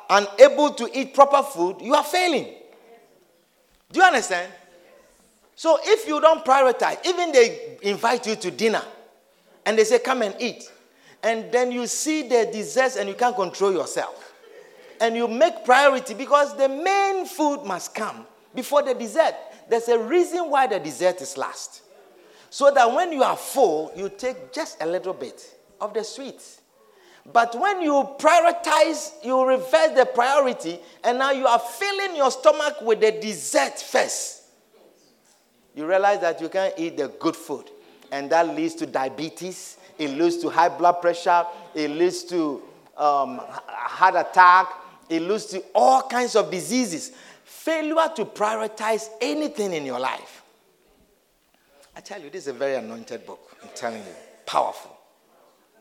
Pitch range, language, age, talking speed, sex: 195-310 Hz, English, 50-69, 160 wpm, male